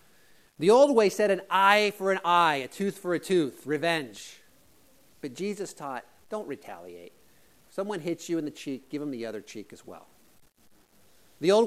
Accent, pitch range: American, 155-250 Hz